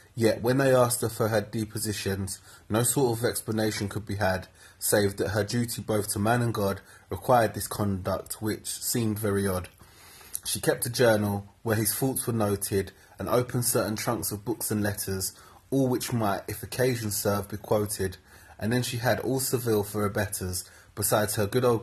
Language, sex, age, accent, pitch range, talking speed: English, male, 20-39, British, 100-115 Hz, 190 wpm